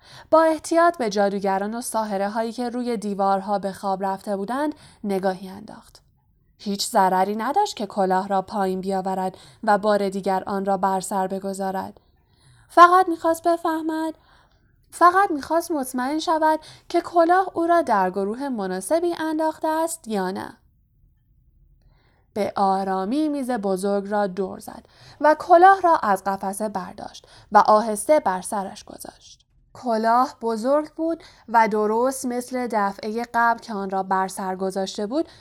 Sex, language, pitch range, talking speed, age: female, Persian, 195-290 Hz, 140 wpm, 10-29